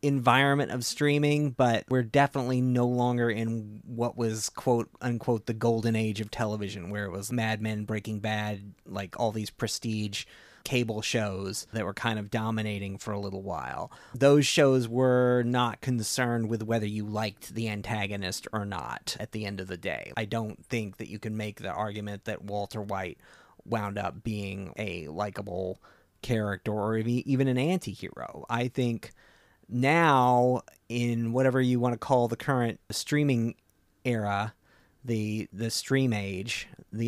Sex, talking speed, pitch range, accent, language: male, 160 wpm, 105-125 Hz, American, English